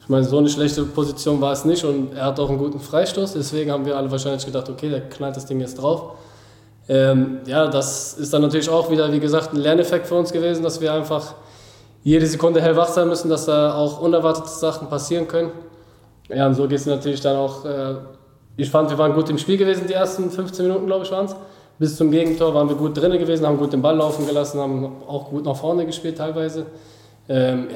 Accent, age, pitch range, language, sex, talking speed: German, 20-39, 135-155 Hz, German, male, 230 wpm